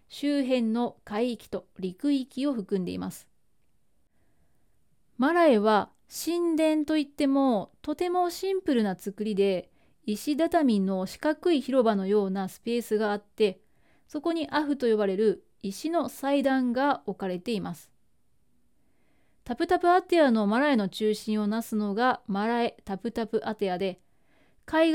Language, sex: Japanese, female